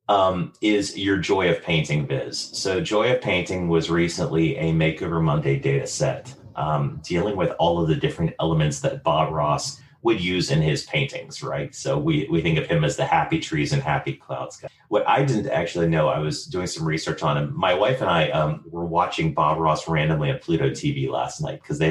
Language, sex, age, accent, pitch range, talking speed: English, male, 30-49, American, 80-130 Hz, 215 wpm